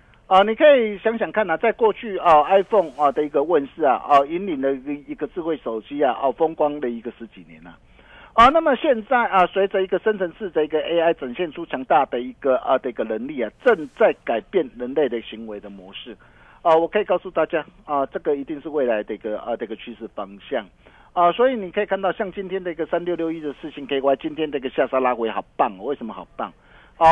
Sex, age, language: male, 50-69, Chinese